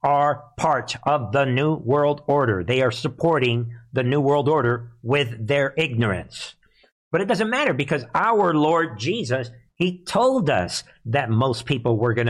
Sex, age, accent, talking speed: male, 50-69, American, 160 wpm